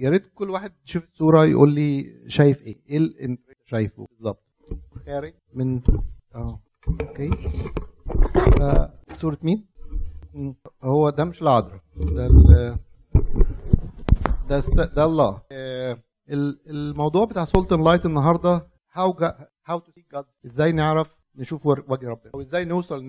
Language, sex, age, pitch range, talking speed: Arabic, male, 50-69, 135-170 Hz, 120 wpm